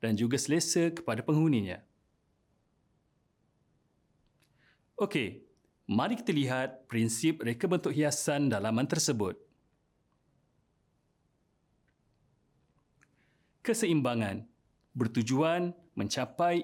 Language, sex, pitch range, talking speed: Malay, male, 115-155 Hz, 65 wpm